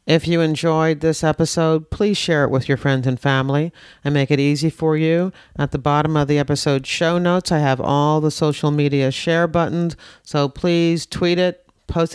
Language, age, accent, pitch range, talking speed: English, 50-69, American, 135-165 Hz, 200 wpm